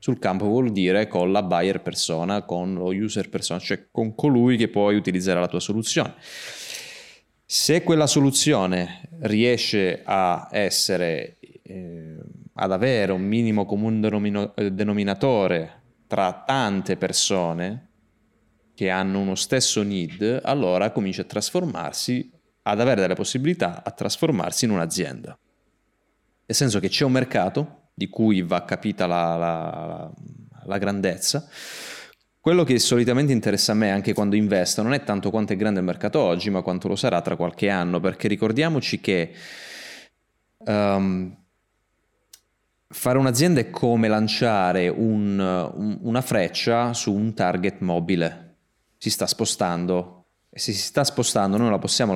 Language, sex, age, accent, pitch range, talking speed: Italian, male, 20-39, native, 95-120 Hz, 135 wpm